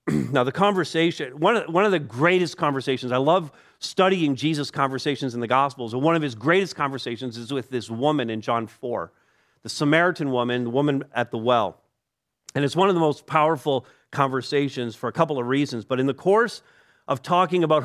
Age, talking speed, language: 40-59, 200 wpm, English